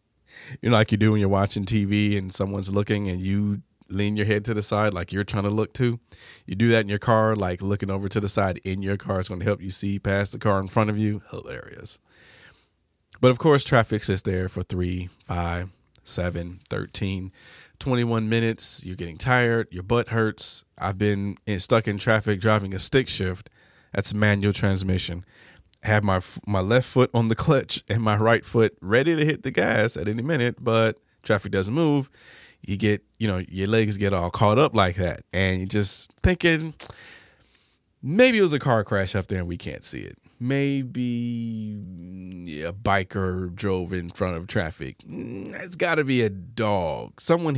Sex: male